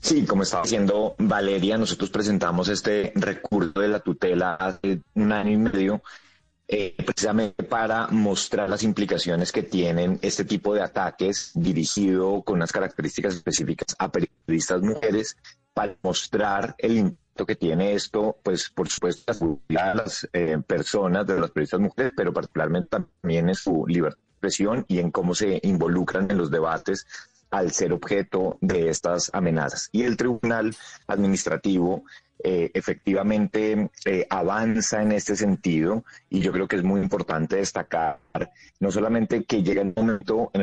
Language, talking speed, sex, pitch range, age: Spanish, 150 wpm, male, 90-105 Hz, 30-49